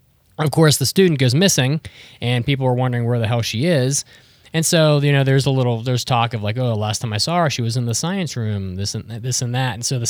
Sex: male